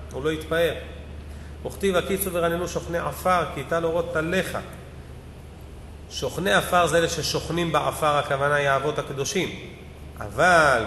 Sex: male